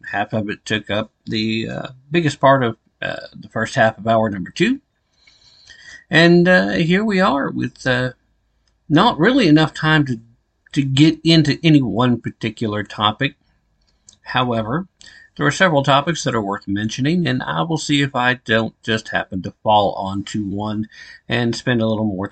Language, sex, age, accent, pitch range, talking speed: English, male, 50-69, American, 115-160 Hz, 170 wpm